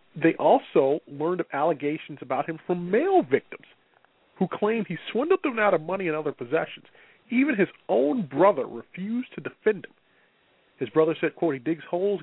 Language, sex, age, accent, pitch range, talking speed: English, male, 40-59, American, 135-195 Hz, 175 wpm